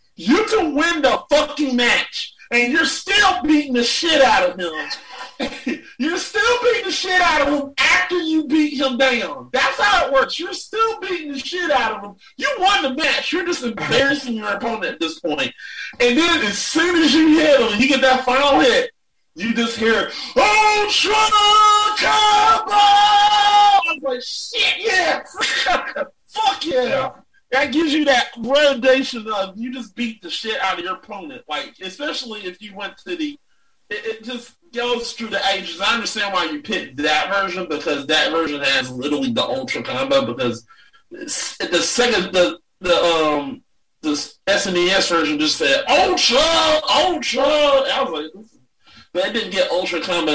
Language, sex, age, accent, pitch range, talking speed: English, male, 40-59, American, 225-330 Hz, 170 wpm